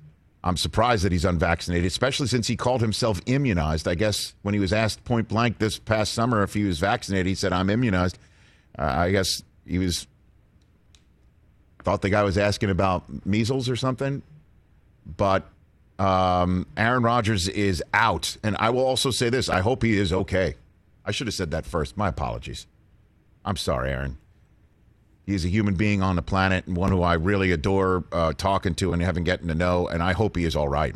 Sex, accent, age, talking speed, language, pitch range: male, American, 50-69, 195 wpm, English, 85-105 Hz